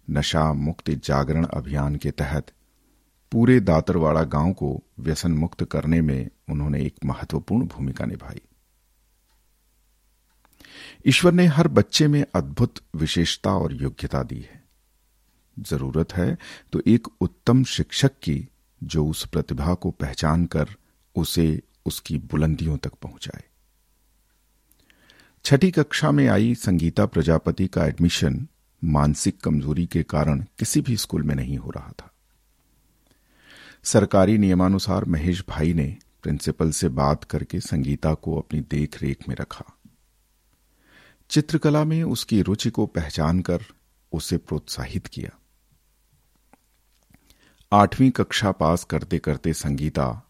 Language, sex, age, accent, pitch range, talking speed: Hindi, male, 50-69, native, 75-100 Hz, 120 wpm